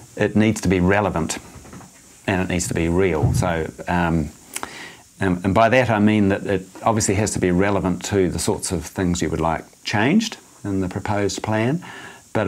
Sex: male